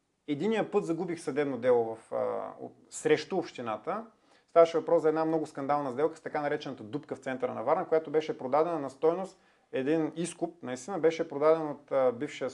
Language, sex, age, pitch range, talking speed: Bulgarian, male, 30-49, 145-180 Hz, 180 wpm